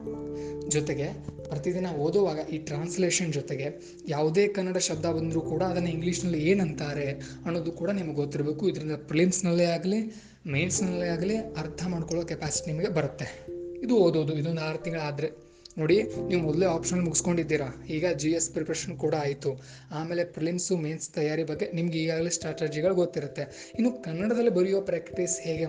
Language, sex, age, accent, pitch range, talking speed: Kannada, male, 20-39, native, 155-185 Hz, 135 wpm